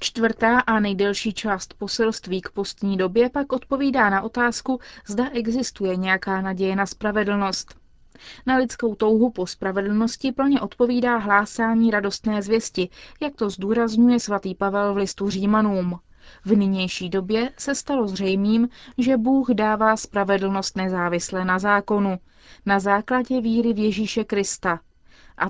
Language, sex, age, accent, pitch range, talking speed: Czech, female, 30-49, native, 195-235 Hz, 130 wpm